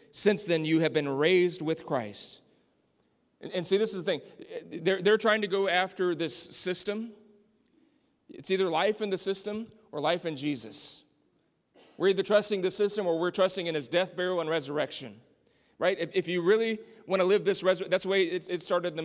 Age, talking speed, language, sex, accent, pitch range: 40-59, 205 wpm, English, male, American, 170-210 Hz